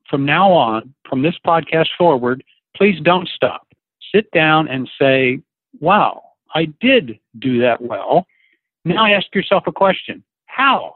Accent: American